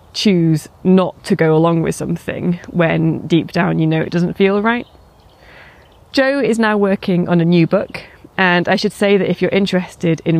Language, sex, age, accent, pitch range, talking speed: English, female, 30-49, British, 170-200 Hz, 190 wpm